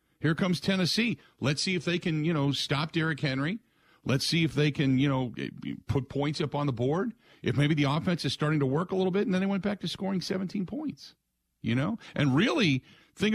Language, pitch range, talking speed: English, 105-165 Hz, 230 wpm